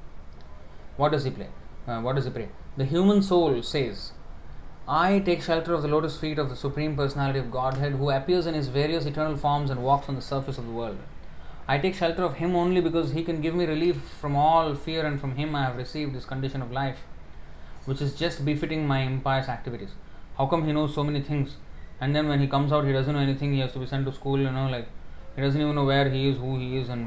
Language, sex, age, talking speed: English, male, 20-39, 235 wpm